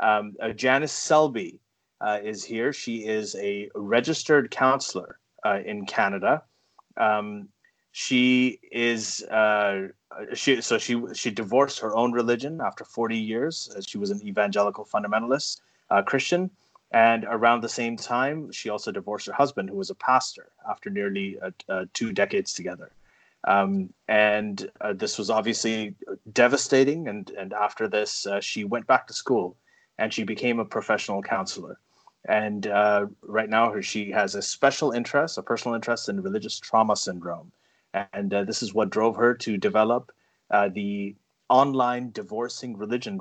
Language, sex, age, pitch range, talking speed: English, male, 30-49, 105-135 Hz, 155 wpm